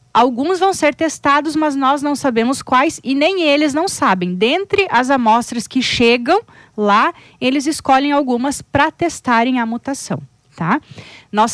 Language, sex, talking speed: Portuguese, female, 150 wpm